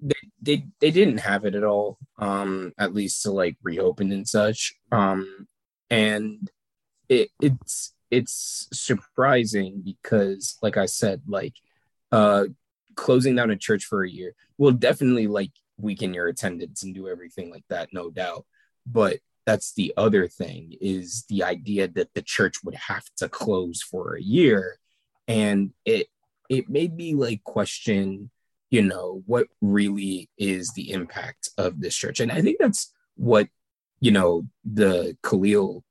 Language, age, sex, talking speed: English, 20-39, male, 155 wpm